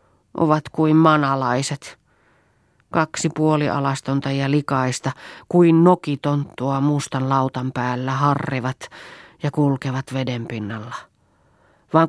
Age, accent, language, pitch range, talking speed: 40-59, native, Finnish, 120-165 Hz, 90 wpm